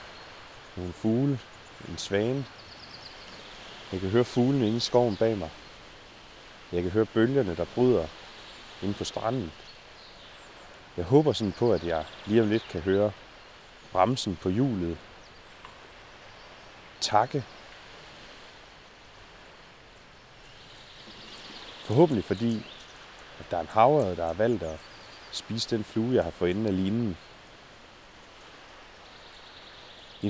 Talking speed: 115 wpm